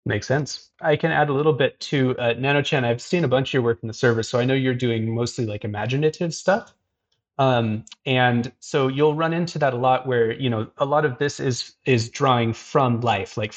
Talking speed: 230 wpm